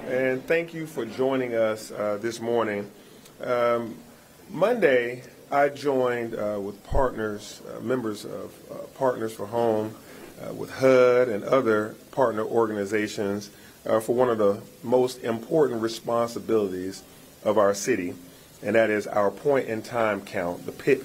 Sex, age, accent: male, 40-59, American